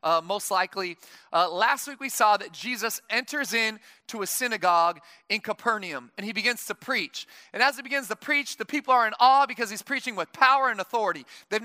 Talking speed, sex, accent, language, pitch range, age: 210 wpm, male, American, English, 220-270 Hz, 30-49